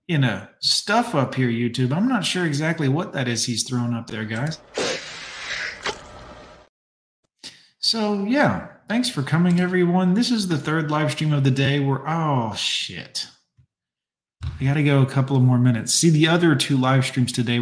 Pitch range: 125-160 Hz